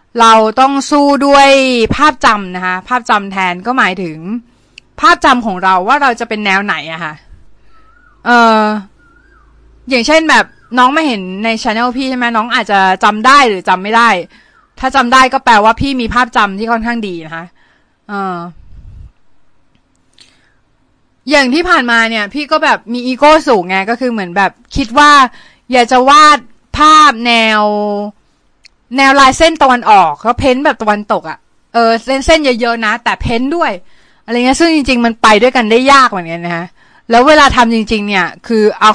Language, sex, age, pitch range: Thai, female, 20-39, 200-270 Hz